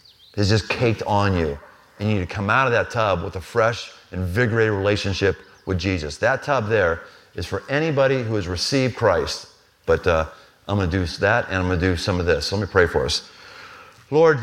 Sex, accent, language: male, American, English